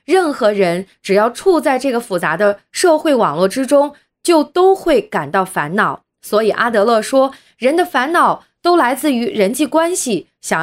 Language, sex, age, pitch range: Chinese, female, 20-39, 195-295 Hz